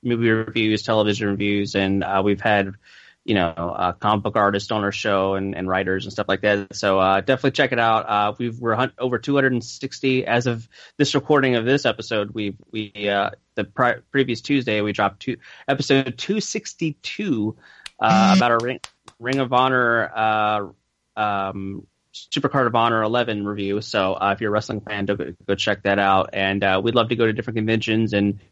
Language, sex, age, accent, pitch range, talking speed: English, male, 20-39, American, 100-125 Hz, 200 wpm